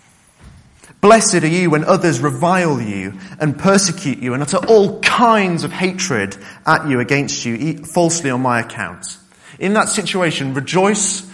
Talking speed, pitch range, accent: 150 wpm, 115-160 Hz, British